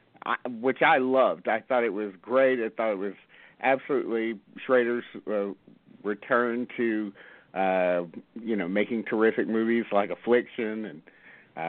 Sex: male